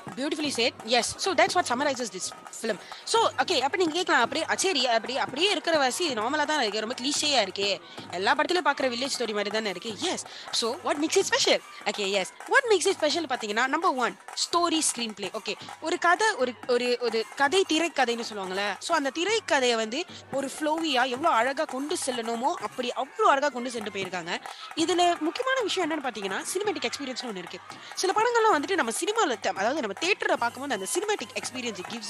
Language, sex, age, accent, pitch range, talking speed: Tamil, female, 20-39, native, 220-350 Hz, 80 wpm